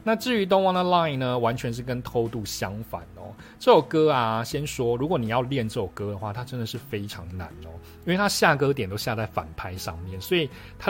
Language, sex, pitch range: Chinese, male, 100-145 Hz